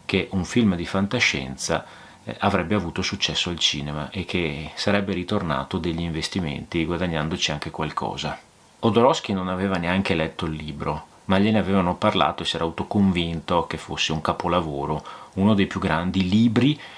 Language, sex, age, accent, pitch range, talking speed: Italian, male, 30-49, native, 85-100 Hz, 150 wpm